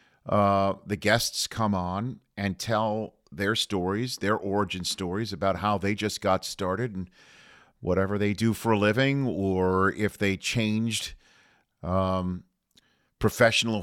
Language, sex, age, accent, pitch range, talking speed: English, male, 50-69, American, 100-115 Hz, 135 wpm